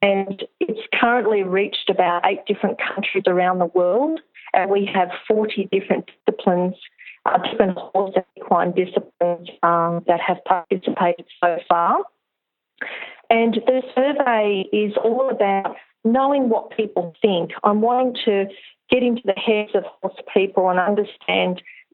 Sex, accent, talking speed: female, Australian, 140 wpm